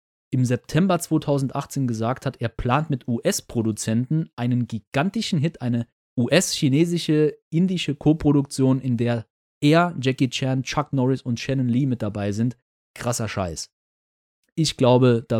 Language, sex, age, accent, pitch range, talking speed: German, male, 30-49, German, 115-145 Hz, 135 wpm